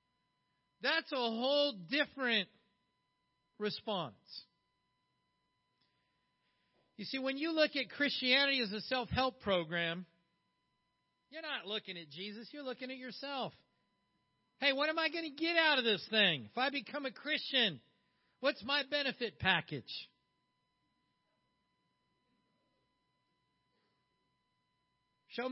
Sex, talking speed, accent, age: male, 110 wpm, American, 50-69